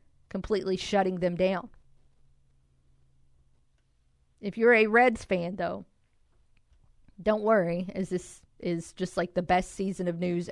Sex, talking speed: female, 125 wpm